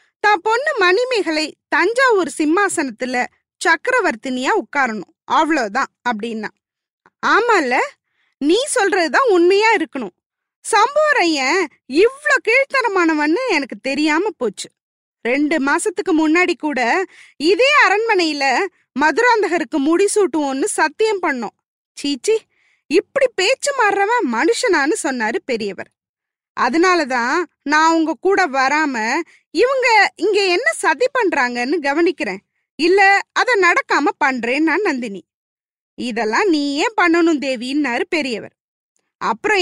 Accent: native